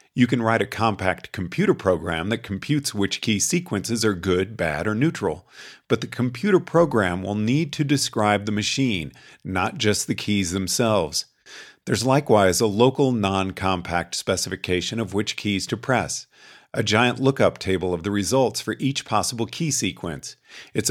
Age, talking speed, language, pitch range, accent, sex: 40-59, 160 wpm, English, 100-130 Hz, American, male